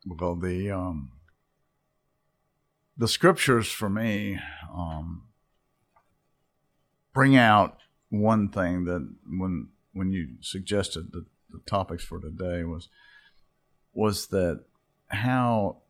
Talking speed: 100 wpm